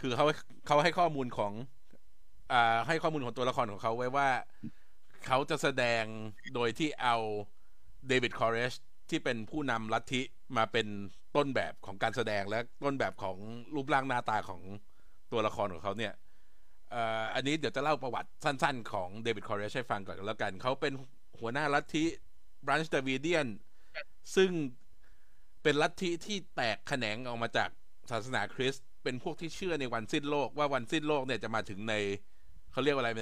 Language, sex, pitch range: Thai, male, 110-150 Hz